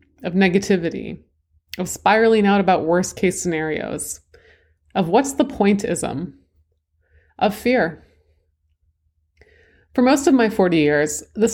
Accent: American